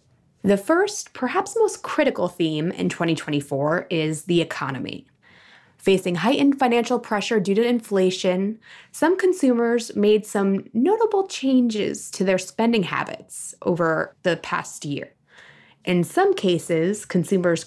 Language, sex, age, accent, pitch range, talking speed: English, female, 20-39, American, 170-245 Hz, 120 wpm